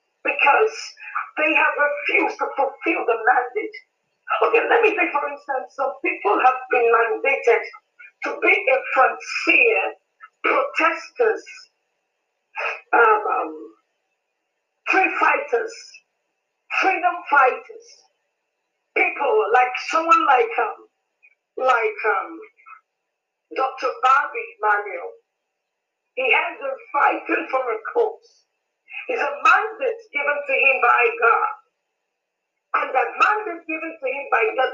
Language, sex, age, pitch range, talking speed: English, female, 50-69, 275-435 Hz, 105 wpm